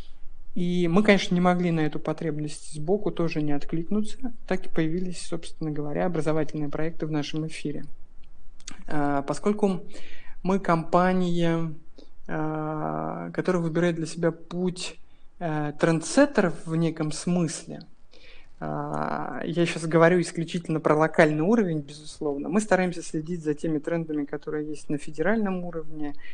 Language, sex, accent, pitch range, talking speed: Russian, male, native, 155-180 Hz, 120 wpm